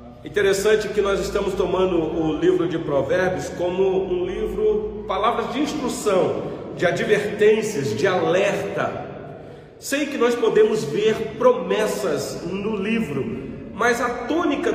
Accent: Brazilian